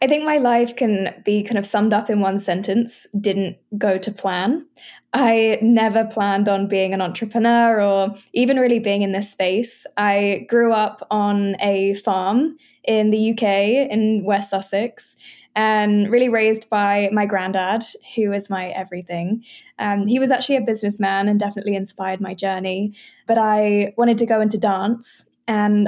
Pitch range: 200-225 Hz